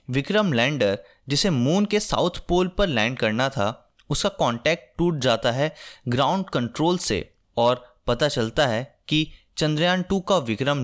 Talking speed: 155 wpm